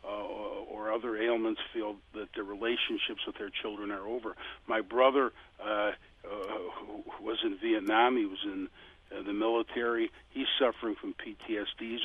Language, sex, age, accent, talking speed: English, male, 50-69, American, 160 wpm